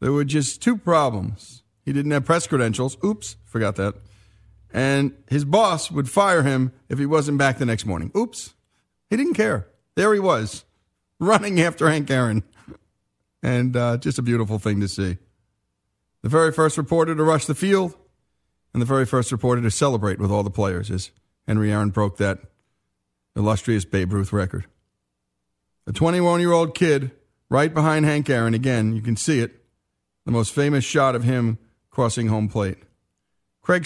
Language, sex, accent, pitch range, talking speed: English, male, American, 110-155 Hz, 170 wpm